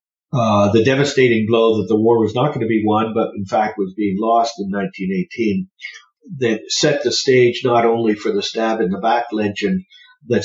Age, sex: 50-69, male